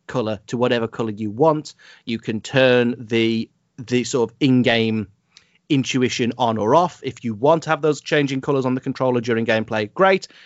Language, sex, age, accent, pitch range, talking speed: English, male, 30-49, British, 115-150 Hz, 185 wpm